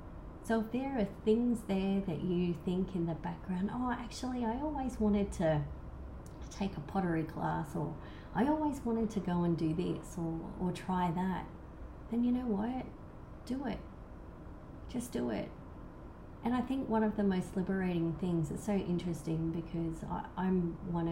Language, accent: English, Australian